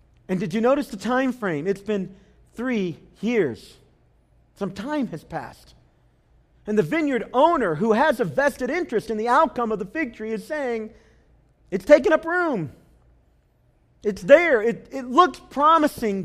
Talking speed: 160 wpm